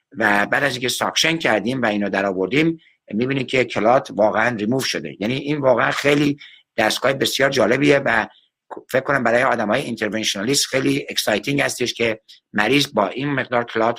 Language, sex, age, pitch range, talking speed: Persian, male, 60-79, 110-145 Hz, 160 wpm